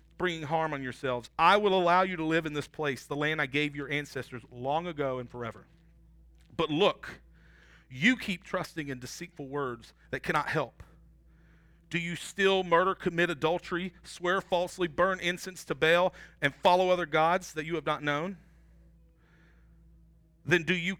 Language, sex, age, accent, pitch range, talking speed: English, male, 40-59, American, 130-180 Hz, 165 wpm